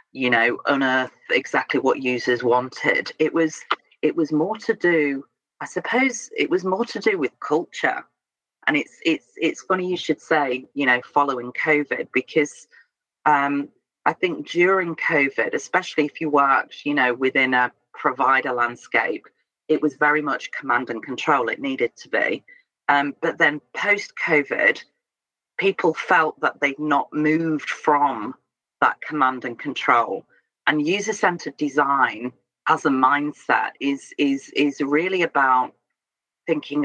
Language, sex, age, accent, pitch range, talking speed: English, female, 40-59, British, 130-185 Hz, 145 wpm